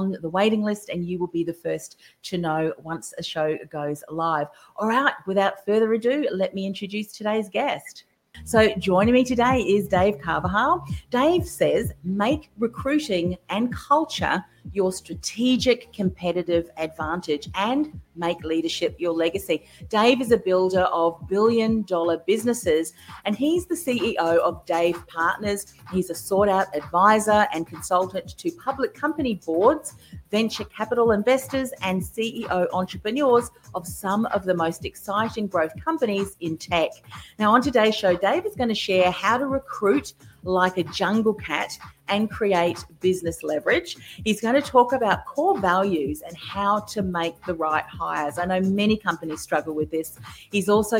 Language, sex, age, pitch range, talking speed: English, female, 40-59, 170-225 Hz, 160 wpm